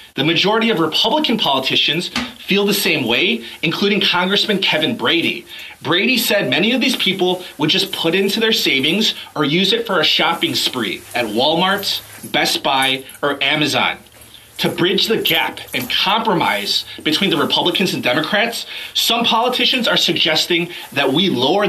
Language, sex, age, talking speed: English, male, 30-49, 155 wpm